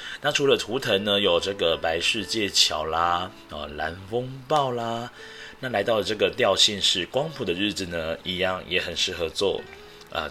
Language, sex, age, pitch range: Chinese, male, 30-49, 90-125 Hz